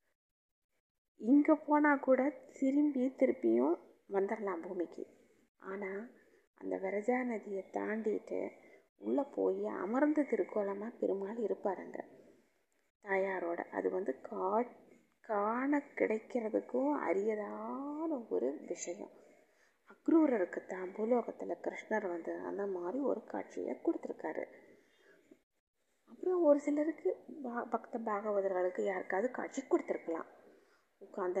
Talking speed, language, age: 90 wpm, Tamil, 20-39